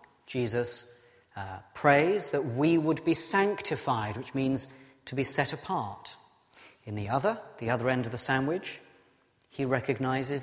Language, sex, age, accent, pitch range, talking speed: English, male, 40-59, British, 120-165 Hz, 145 wpm